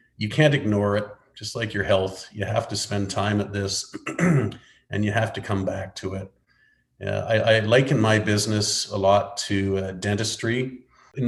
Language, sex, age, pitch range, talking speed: English, male, 40-59, 95-115 Hz, 185 wpm